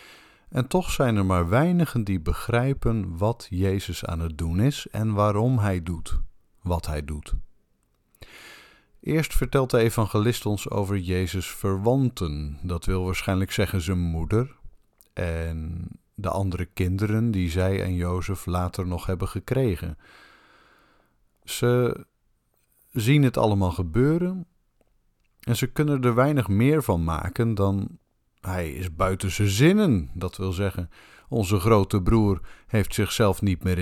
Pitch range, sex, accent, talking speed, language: 90-115 Hz, male, Dutch, 135 wpm, Dutch